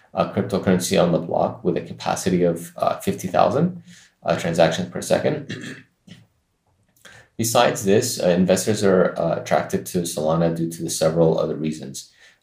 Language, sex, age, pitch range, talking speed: English, male, 30-49, 85-105 Hz, 150 wpm